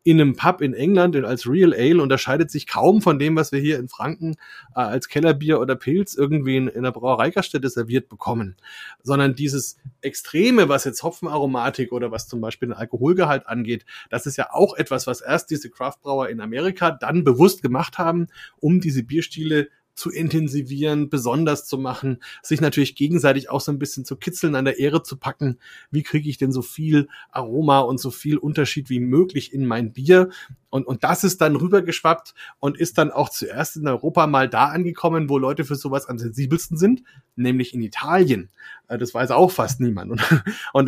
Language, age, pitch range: German, 30-49, 130-165 Hz